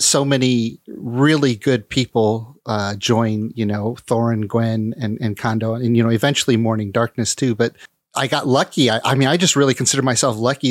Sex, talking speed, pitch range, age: male, 190 wpm, 110-130 Hz, 30-49